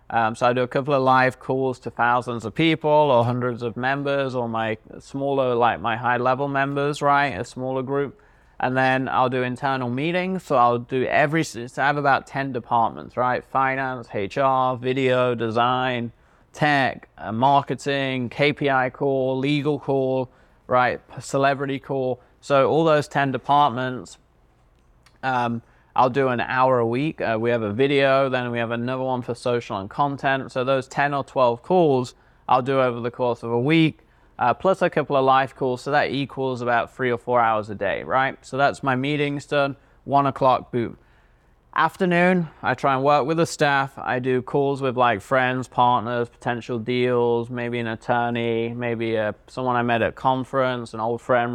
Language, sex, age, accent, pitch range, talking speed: English, male, 30-49, British, 120-140 Hz, 180 wpm